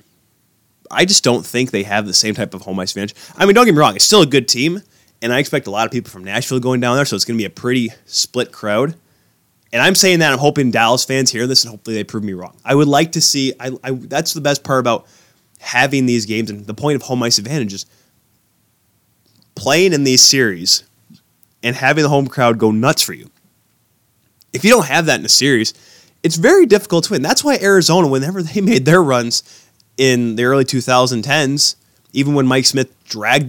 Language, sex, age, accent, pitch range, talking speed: English, male, 20-39, American, 115-155 Hz, 230 wpm